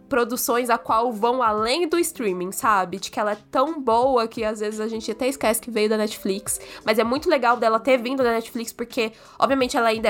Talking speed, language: 225 wpm, Portuguese